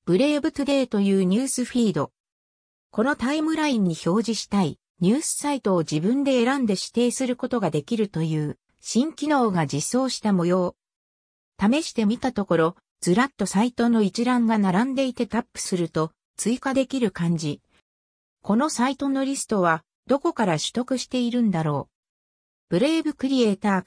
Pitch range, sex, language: 175-265 Hz, female, Japanese